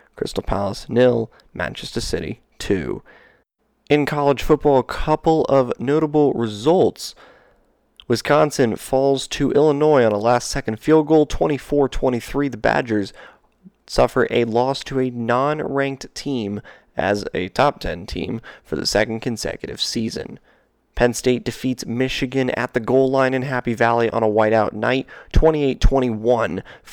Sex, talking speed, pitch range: male, 130 wpm, 115-140 Hz